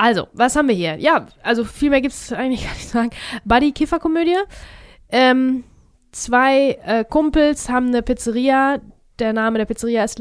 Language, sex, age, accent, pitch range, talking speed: German, female, 20-39, German, 215-260 Hz, 170 wpm